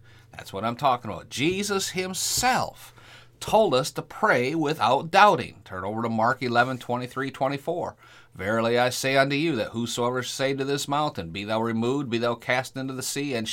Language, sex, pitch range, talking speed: English, male, 115-140 Hz, 180 wpm